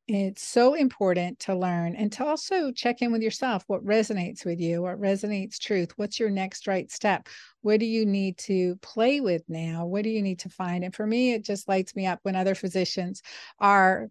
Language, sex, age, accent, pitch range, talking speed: English, female, 50-69, American, 180-205 Hz, 215 wpm